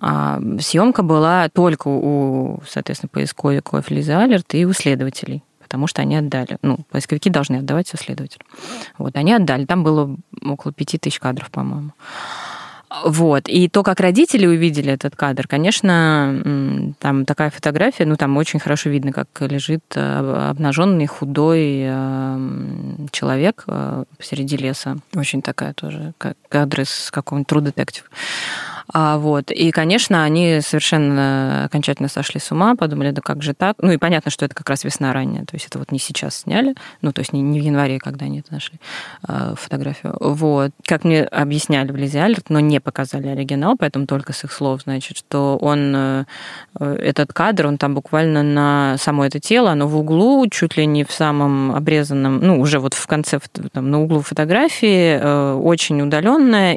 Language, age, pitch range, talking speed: Russian, 20-39, 140-160 Hz, 165 wpm